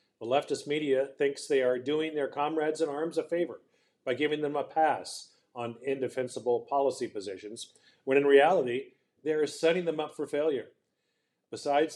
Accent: American